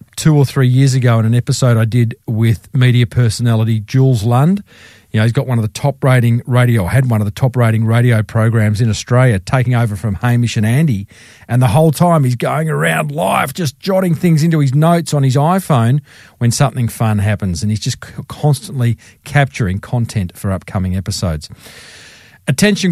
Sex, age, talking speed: male, 40-59, 190 wpm